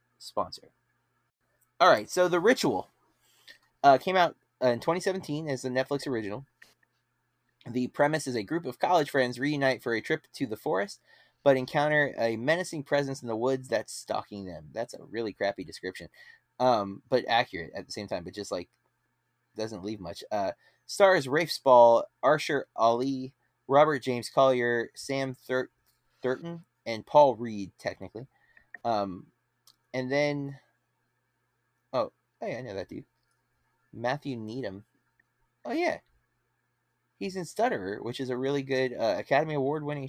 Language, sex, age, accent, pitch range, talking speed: English, male, 20-39, American, 115-140 Hz, 150 wpm